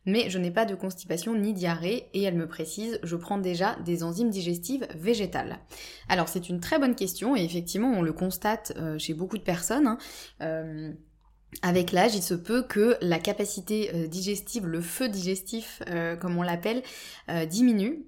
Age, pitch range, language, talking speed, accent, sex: 20-39, 170-215 Hz, French, 175 wpm, French, female